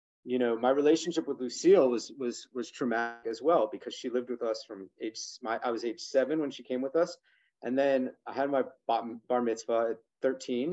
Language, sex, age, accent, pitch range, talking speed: English, male, 30-49, American, 115-155 Hz, 215 wpm